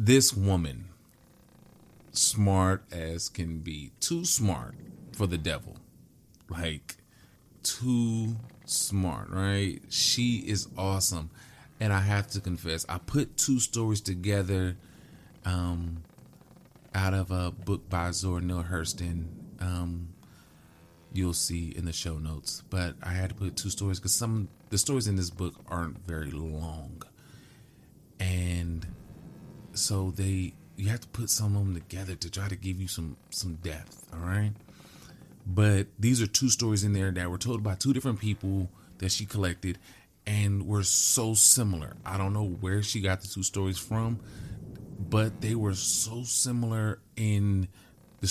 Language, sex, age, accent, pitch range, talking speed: English, male, 30-49, American, 90-110 Hz, 150 wpm